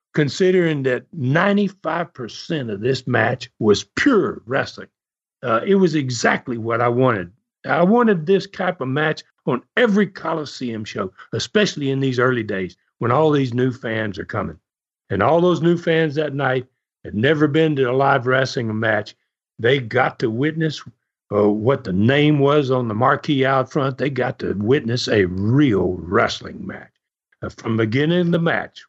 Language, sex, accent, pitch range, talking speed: English, male, American, 120-165 Hz, 170 wpm